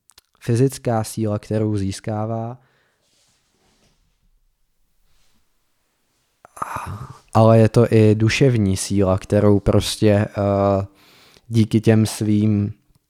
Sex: male